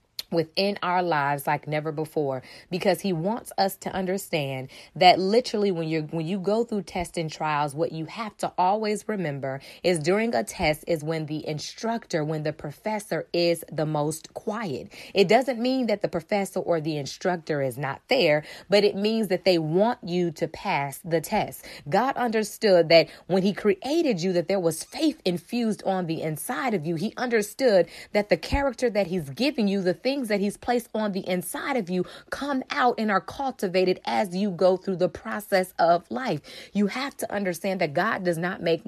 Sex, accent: female, American